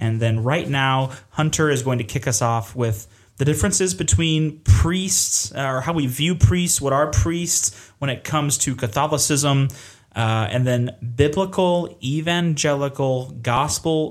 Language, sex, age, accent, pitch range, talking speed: English, male, 20-39, American, 110-140 Hz, 150 wpm